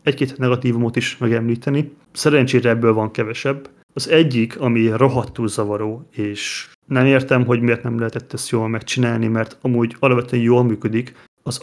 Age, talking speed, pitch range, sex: 30-49, 150 wpm, 115-135 Hz, male